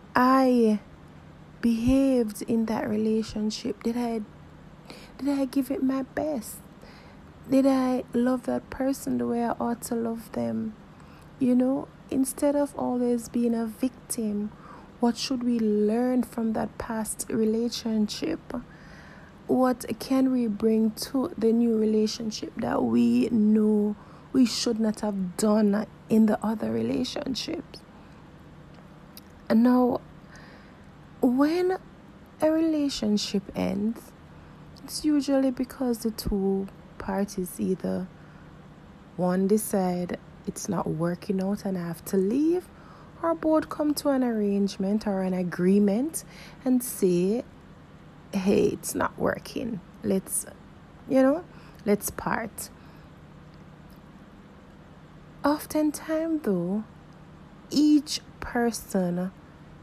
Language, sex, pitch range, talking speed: English, female, 195-255 Hz, 110 wpm